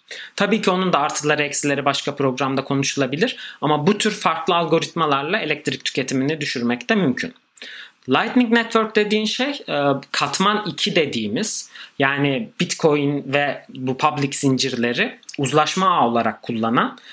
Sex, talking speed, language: male, 125 wpm, Turkish